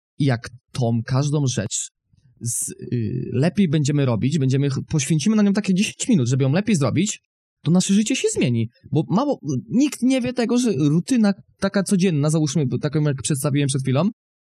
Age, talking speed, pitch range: 20-39, 170 wpm, 135-185 Hz